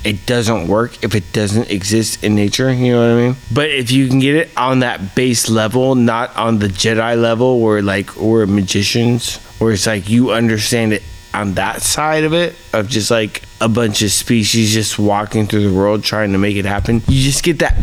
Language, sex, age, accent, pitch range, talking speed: English, male, 20-39, American, 110-150 Hz, 220 wpm